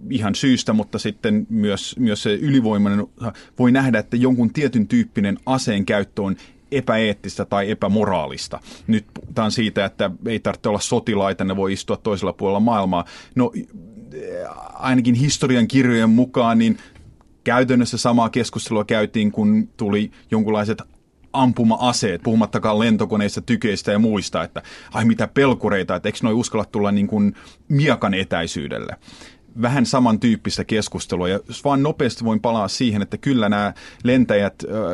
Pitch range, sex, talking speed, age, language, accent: 100-125 Hz, male, 135 wpm, 30-49, Finnish, native